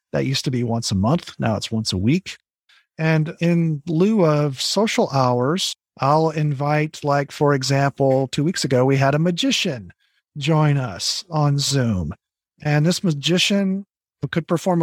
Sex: male